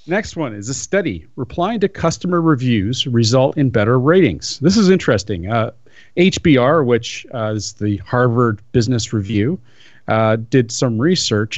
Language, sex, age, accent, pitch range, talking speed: English, male, 40-59, American, 110-150 Hz, 150 wpm